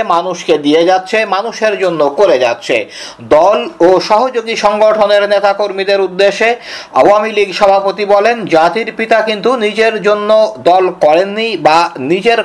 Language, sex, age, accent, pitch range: Bengali, male, 50-69, native, 185-225 Hz